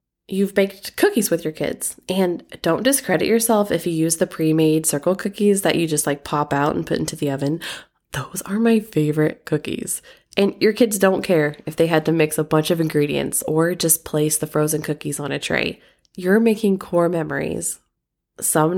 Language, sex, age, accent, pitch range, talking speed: English, female, 20-39, American, 155-210 Hz, 195 wpm